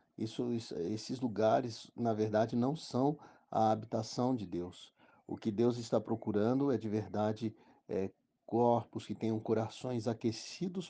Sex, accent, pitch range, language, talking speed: male, Brazilian, 105-125 Hz, Portuguese, 145 wpm